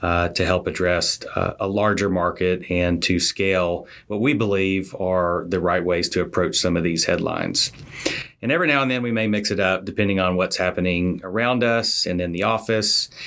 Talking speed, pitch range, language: 200 wpm, 95-110 Hz, English